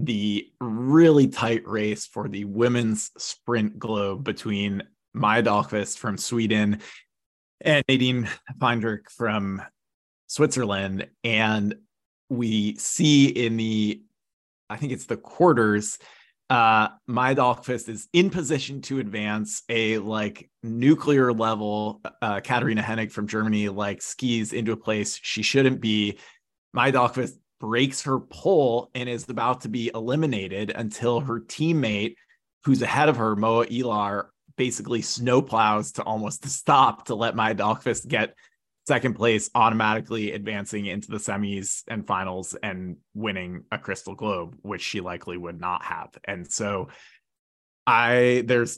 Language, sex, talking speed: English, male, 130 wpm